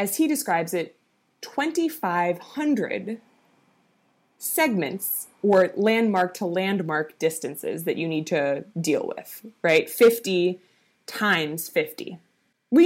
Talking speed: 105 wpm